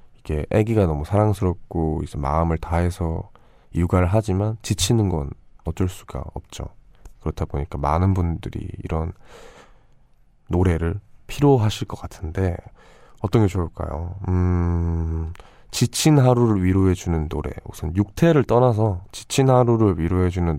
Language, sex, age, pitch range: Korean, male, 20-39, 85-105 Hz